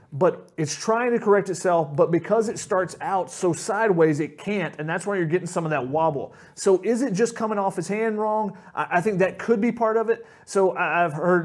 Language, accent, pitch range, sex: English, American, 160-200 Hz, male